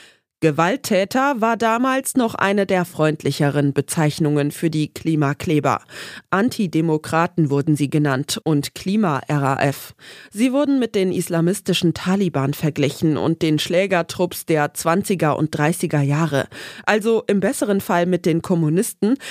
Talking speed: 120 wpm